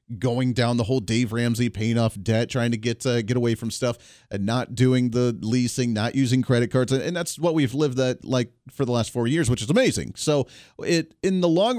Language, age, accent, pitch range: English, 40-59, American, 120-170 Hz